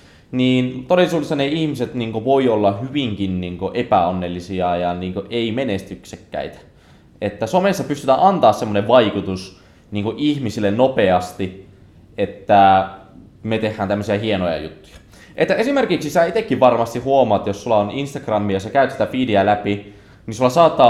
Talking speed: 145 wpm